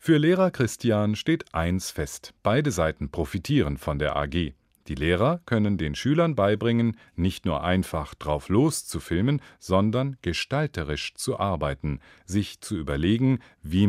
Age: 40-59